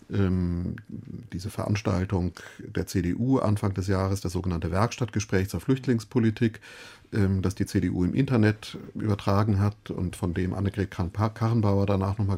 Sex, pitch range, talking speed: male, 95-115 Hz, 125 wpm